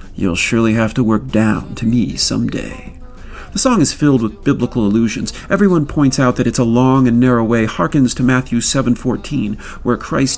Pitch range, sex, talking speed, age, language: 115-150 Hz, male, 190 wpm, 40-59, English